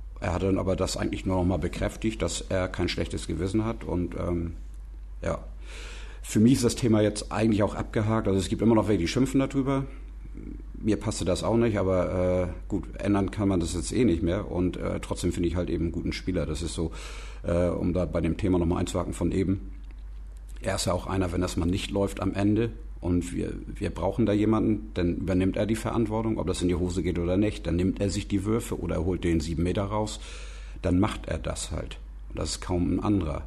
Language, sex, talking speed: German, male, 235 wpm